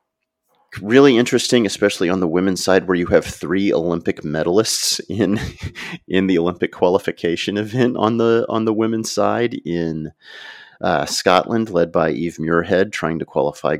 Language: English